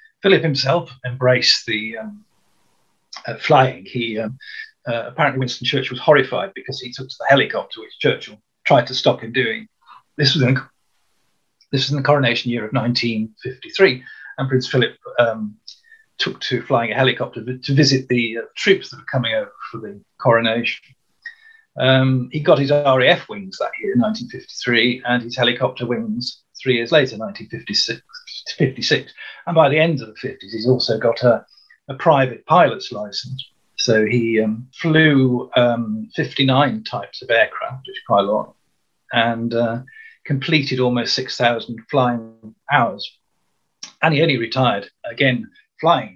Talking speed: 155 wpm